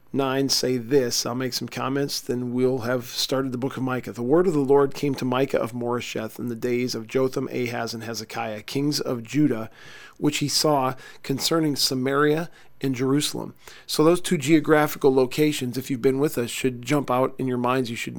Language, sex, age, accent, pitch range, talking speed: English, male, 40-59, American, 125-150 Hz, 200 wpm